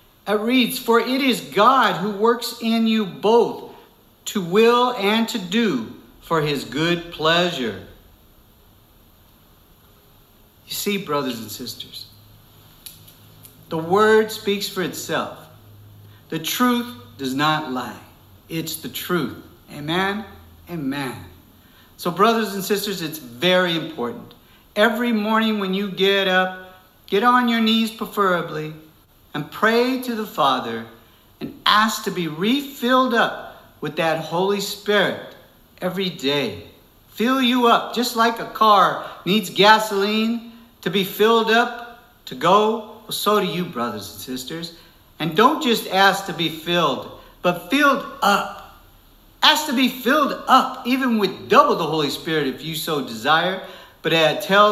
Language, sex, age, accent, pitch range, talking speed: English, male, 60-79, American, 135-220 Hz, 135 wpm